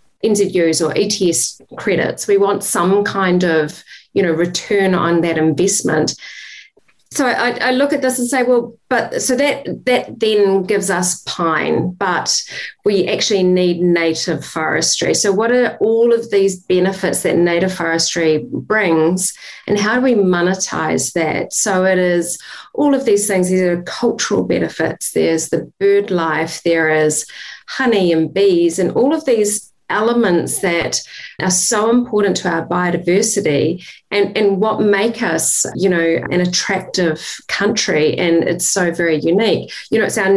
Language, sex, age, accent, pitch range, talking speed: English, female, 40-59, Australian, 170-210 Hz, 160 wpm